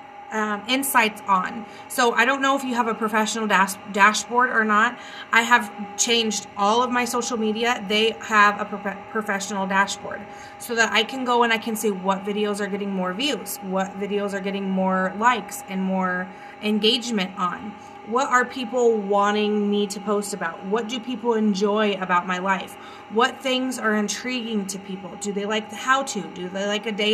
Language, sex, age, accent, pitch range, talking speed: English, female, 30-49, American, 205-240 Hz, 185 wpm